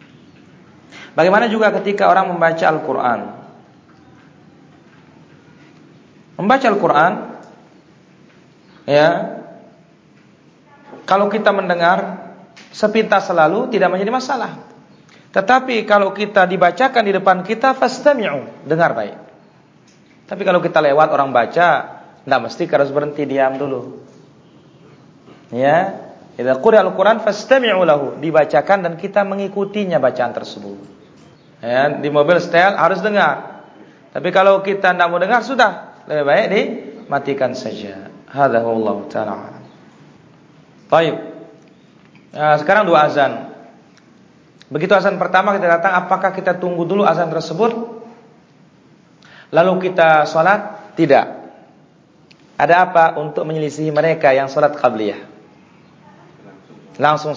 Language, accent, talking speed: Indonesian, native, 100 wpm